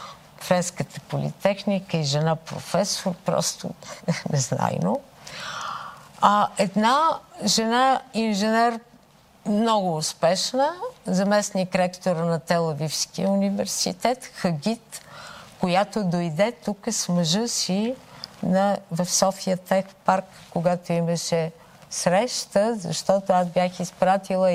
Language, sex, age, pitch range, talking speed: Bulgarian, female, 50-69, 170-205 Hz, 90 wpm